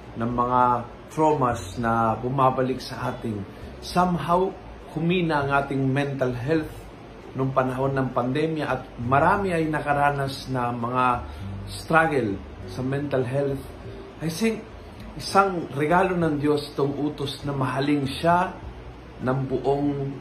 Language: Filipino